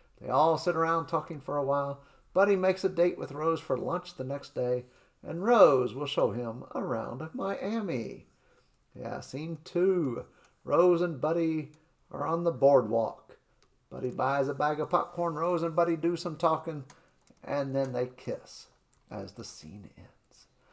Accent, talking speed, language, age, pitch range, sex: American, 160 wpm, English, 50-69, 135-175 Hz, male